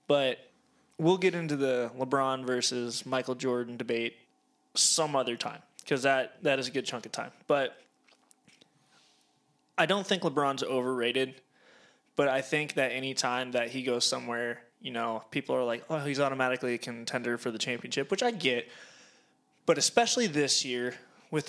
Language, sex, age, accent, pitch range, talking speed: English, male, 20-39, American, 125-165 Hz, 165 wpm